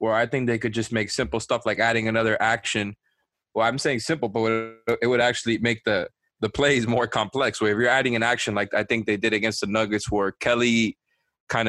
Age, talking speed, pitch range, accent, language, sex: 20-39, 225 wpm, 110-130 Hz, American, English, male